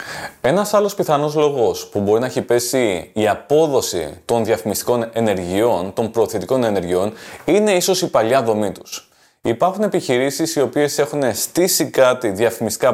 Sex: male